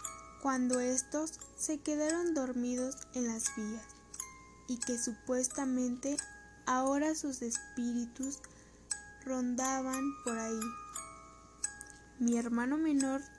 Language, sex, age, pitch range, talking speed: Spanish, female, 10-29, 235-295 Hz, 90 wpm